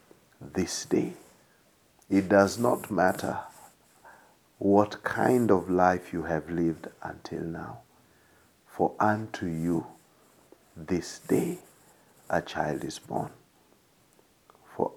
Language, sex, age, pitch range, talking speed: Swahili, male, 50-69, 95-130 Hz, 100 wpm